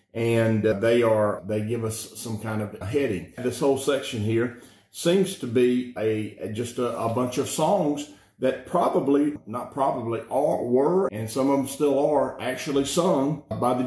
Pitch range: 110-135 Hz